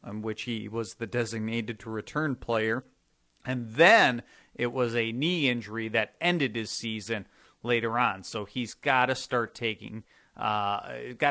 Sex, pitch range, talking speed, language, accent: male, 115-140 Hz, 160 wpm, English, American